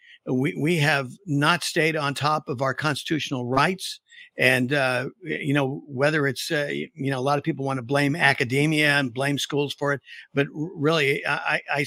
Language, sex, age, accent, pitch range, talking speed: English, male, 50-69, American, 135-155 Hz, 180 wpm